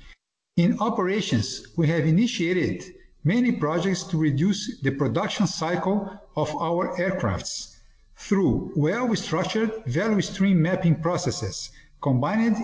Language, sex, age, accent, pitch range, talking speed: Portuguese, male, 50-69, Brazilian, 145-205 Hz, 105 wpm